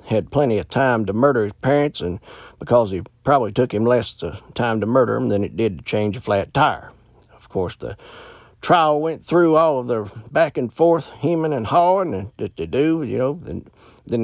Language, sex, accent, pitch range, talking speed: English, male, American, 110-150 Hz, 200 wpm